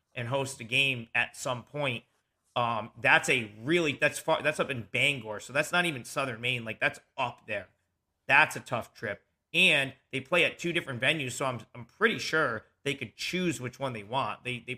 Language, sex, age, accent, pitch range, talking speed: English, male, 40-59, American, 115-140 Hz, 210 wpm